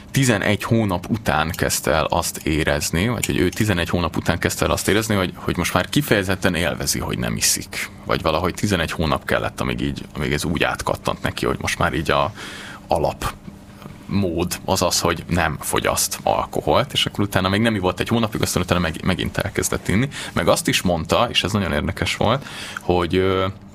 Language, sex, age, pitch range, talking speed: Hungarian, male, 20-39, 90-105 Hz, 190 wpm